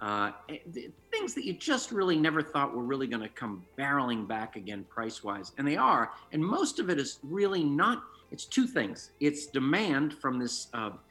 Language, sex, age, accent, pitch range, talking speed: English, male, 50-69, American, 115-180 Hz, 190 wpm